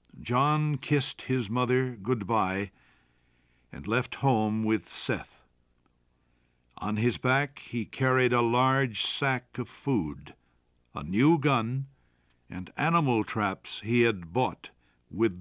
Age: 60-79